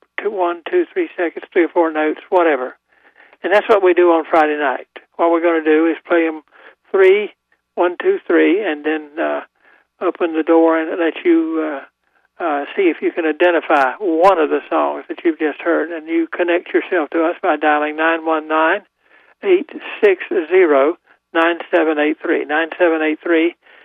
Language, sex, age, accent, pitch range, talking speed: English, male, 60-79, American, 150-185 Hz, 160 wpm